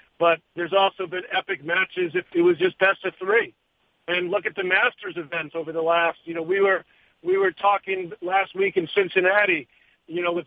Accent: American